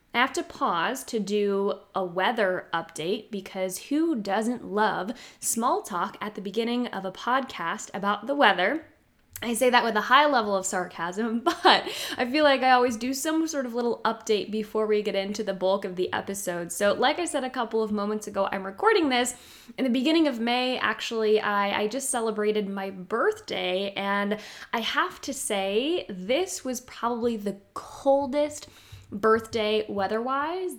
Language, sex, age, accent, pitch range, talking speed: English, female, 10-29, American, 200-260 Hz, 175 wpm